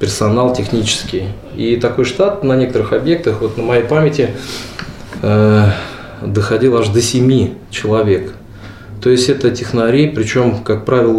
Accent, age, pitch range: native, 20-39, 105-130 Hz